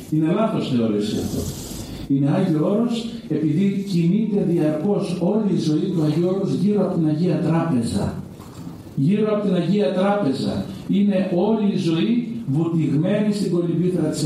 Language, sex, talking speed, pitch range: Greek, male, 145 wpm, 155-200 Hz